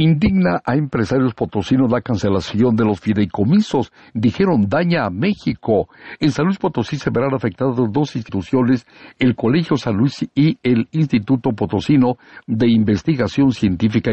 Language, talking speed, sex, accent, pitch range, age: Spanish, 140 wpm, male, Mexican, 105-135 Hz, 60-79